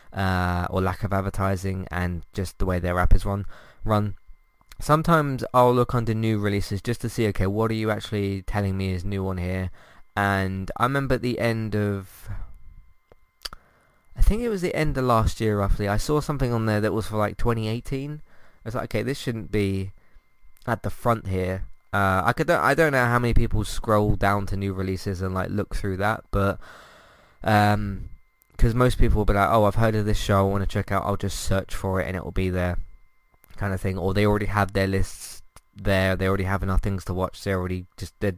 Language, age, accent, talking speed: English, 20-39, British, 220 wpm